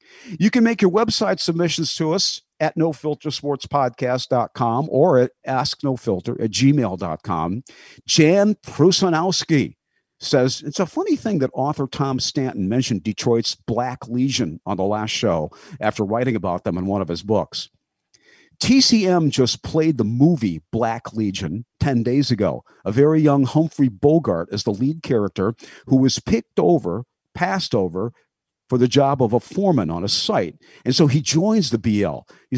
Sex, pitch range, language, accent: male, 115-155 Hz, English, American